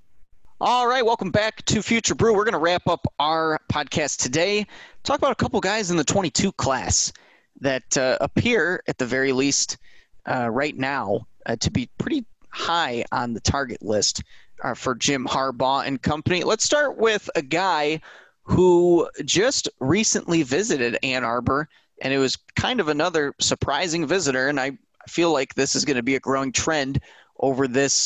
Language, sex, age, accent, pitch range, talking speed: English, male, 20-39, American, 135-175 Hz, 175 wpm